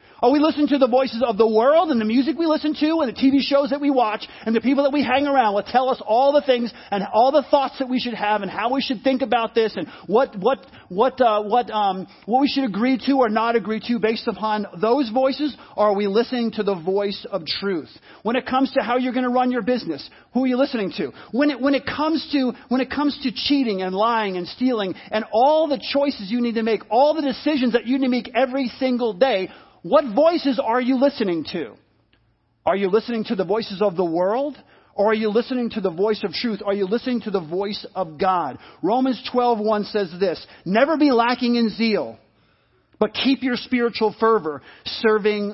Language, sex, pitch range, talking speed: English, male, 205-265 Hz, 230 wpm